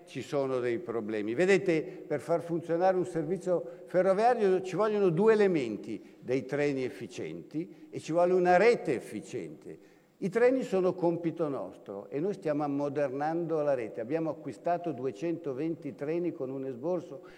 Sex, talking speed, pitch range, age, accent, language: male, 145 wpm, 140-185 Hz, 60-79, native, Italian